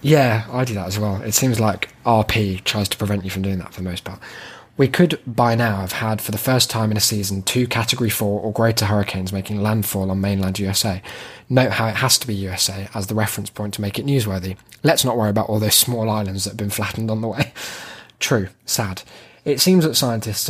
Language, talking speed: English, 235 wpm